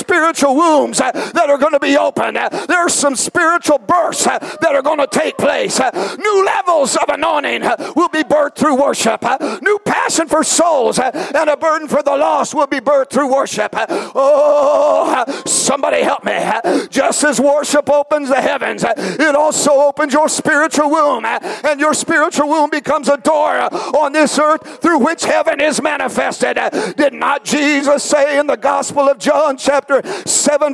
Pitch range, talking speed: 285-315 Hz, 165 wpm